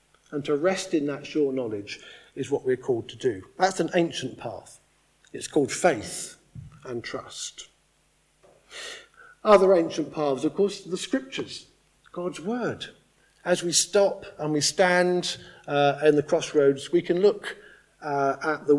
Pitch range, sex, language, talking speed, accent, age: 150-195 Hz, male, English, 150 wpm, British, 50-69